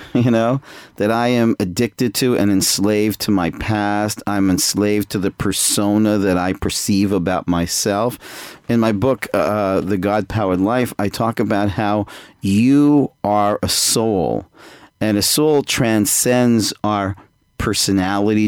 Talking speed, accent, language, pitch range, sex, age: 145 wpm, American, English, 95-120 Hz, male, 40-59